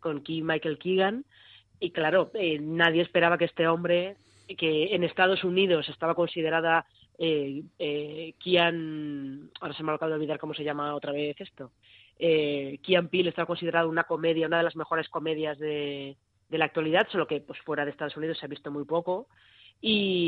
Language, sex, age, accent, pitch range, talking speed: Spanish, female, 20-39, Spanish, 150-175 Hz, 185 wpm